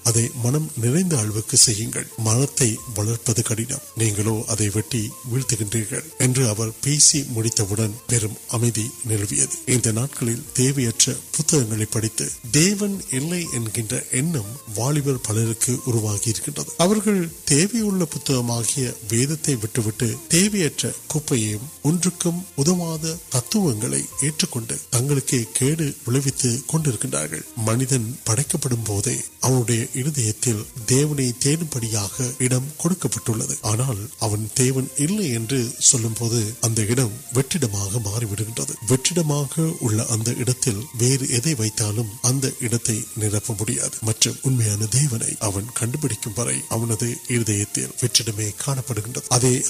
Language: Urdu